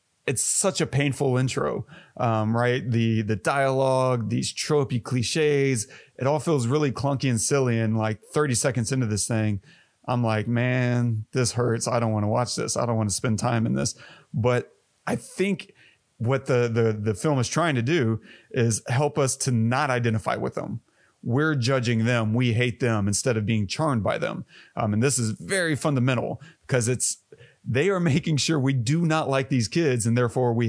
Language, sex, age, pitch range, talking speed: English, male, 30-49, 115-135 Hz, 195 wpm